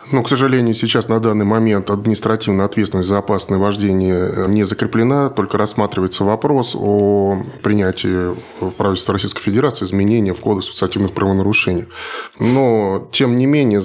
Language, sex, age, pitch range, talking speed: Russian, male, 20-39, 100-115 Hz, 135 wpm